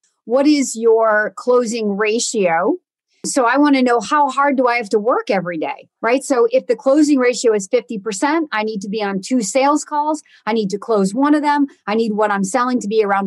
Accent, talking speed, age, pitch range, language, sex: American, 225 wpm, 40-59, 230-310 Hz, English, female